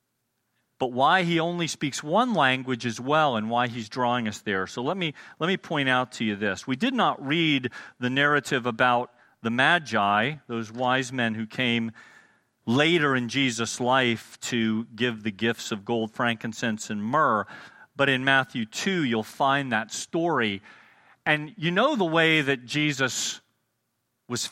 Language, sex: English, male